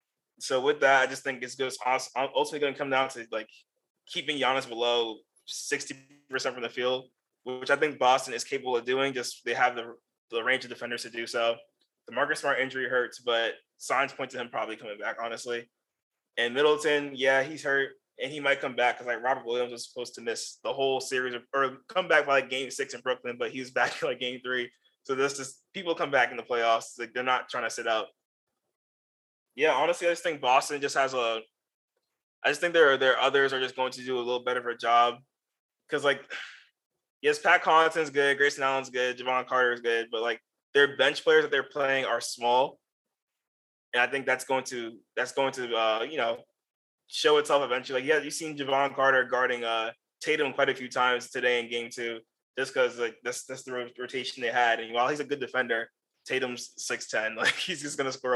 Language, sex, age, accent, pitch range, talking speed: English, male, 20-39, American, 120-140 Hz, 225 wpm